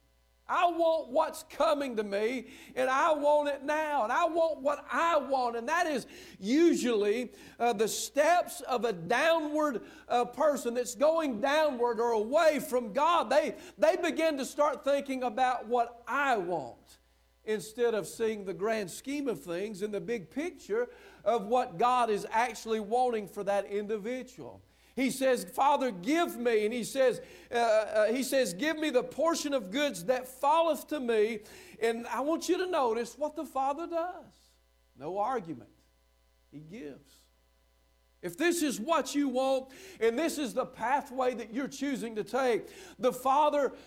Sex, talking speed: male, 160 wpm